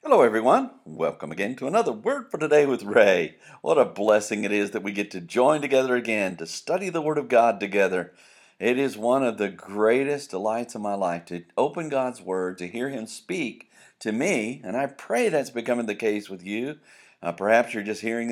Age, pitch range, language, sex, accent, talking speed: 50-69, 95-120 Hz, English, male, American, 210 wpm